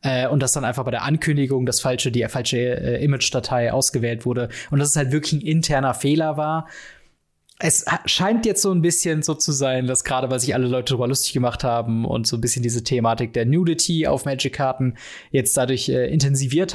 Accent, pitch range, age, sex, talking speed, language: German, 130-165 Hz, 20-39, male, 215 wpm, German